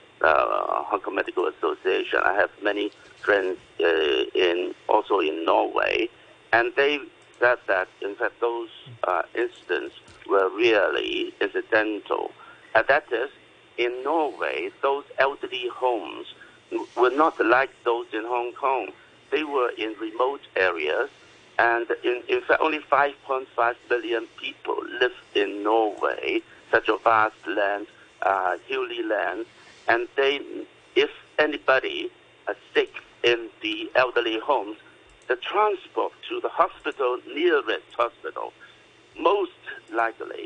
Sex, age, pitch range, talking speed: male, 60-79, 350-420 Hz, 120 wpm